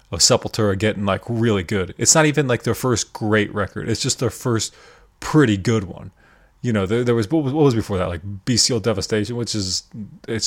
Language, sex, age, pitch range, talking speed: English, male, 20-39, 100-120 Hz, 220 wpm